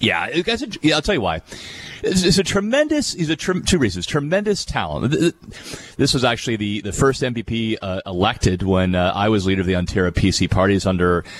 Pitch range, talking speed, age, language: 100-140 Hz, 200 wpm, 40-59, English